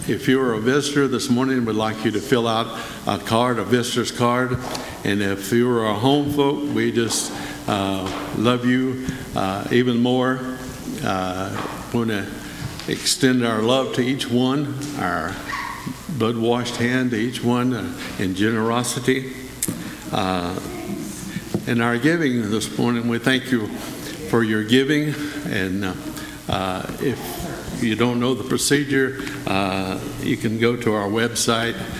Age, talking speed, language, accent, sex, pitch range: 60-79, 150 wpm, English, American, male, 110-130 Hz